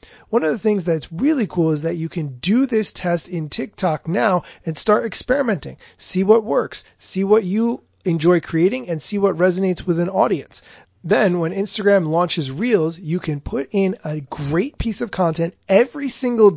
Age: 30-49